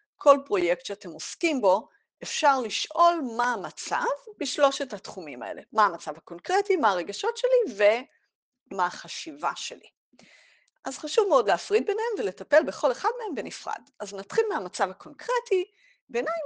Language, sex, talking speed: Hebrew, female, 130 wpm